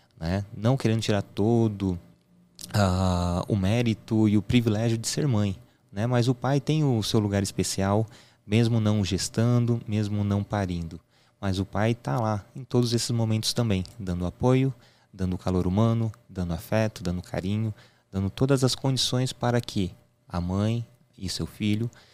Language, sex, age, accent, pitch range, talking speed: Portuguese, male, 20-39, Brazilian, 100-120 Hz, 155 wpm